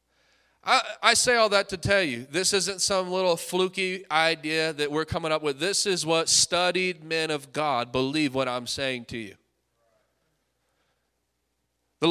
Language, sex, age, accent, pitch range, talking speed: English, male, 30-49, American, 155-205 Hz, 165 wpm